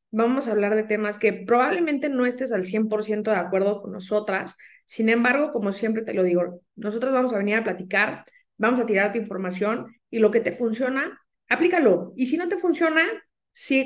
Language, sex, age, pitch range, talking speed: Spanish, female, 20-39, 210-275 Hz, 200 wpm